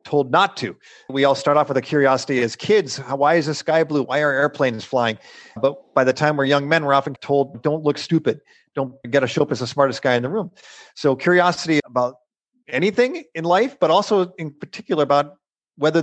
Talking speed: 215 wpm